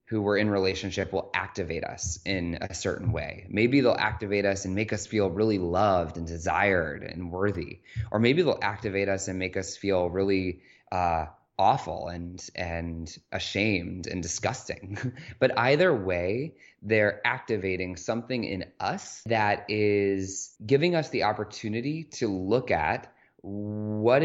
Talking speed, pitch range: 150 wpm, 95-115 Hz